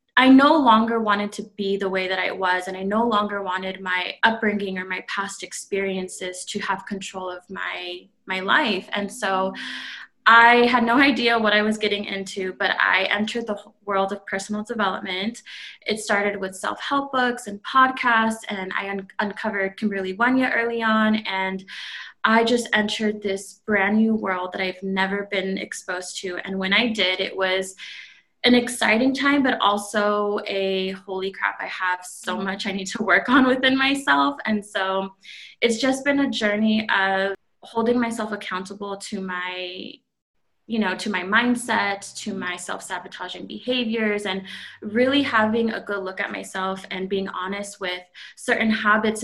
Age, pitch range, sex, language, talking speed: 20-39, 190-225 Hz, female, English, 170 wpm